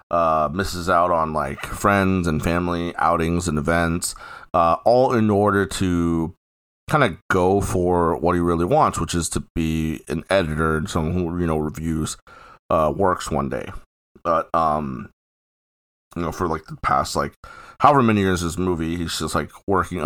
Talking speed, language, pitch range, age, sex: 175 wpm, English, 80-95 Hz, 30-49, male